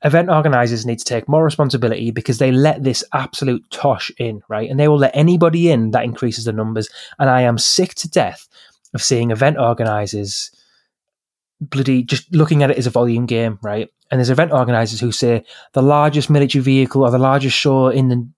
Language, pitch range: English, 115-145 Hz